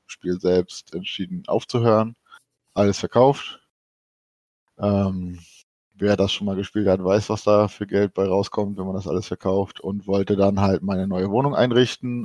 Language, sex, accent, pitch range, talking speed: German, male, German, 95-115 Hz, 160 wpm